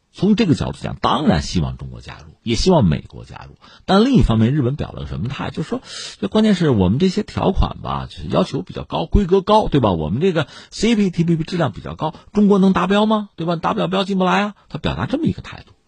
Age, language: 50-69, Chinese